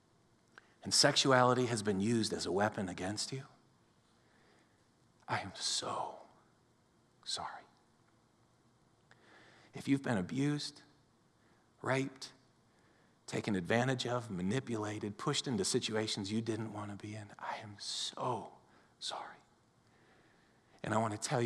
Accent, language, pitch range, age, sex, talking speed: American, English, 115-140 Hz, 40-59, male, 115 wpm